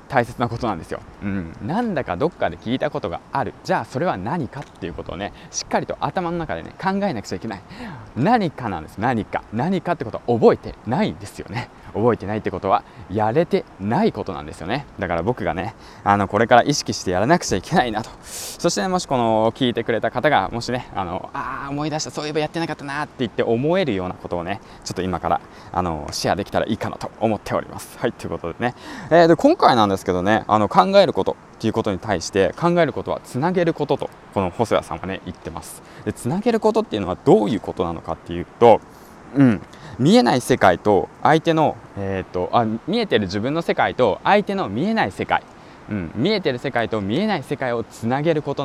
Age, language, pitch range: 20-39, Japanese, 100-165 Hz